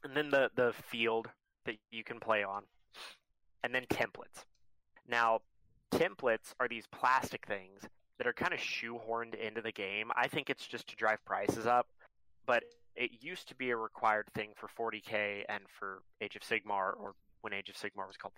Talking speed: 185 wpm